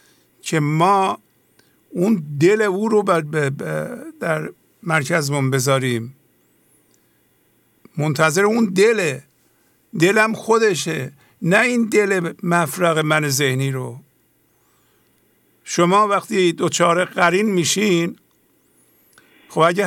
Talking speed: 90 wpm